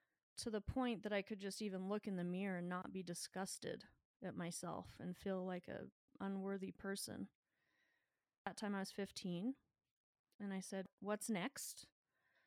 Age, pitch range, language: 30-49, 185-210 Hz, English